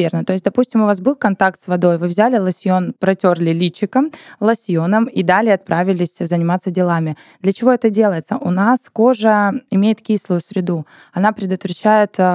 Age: 20-39